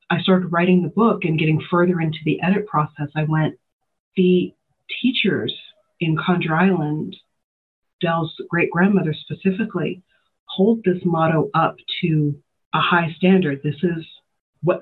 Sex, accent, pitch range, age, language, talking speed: female, American, 150-180 Hz, 40-59, English, 135 wpm